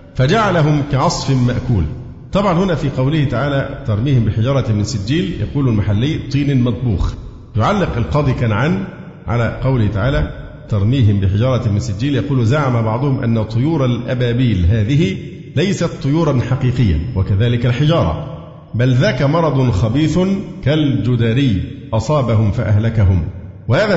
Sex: male